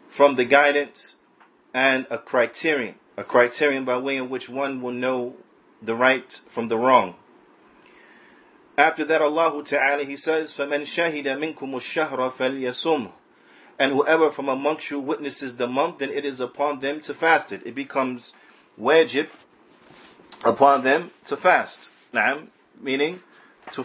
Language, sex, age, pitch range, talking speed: English, male, 30-49, 130-155 Hz, 135 wpm